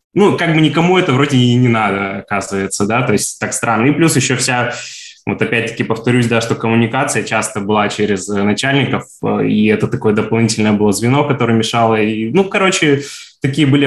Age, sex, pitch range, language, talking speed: 20-39, male, 100-125 Hz, Russian, 175 wpm